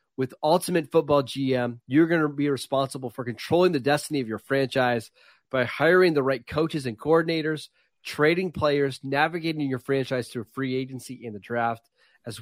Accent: American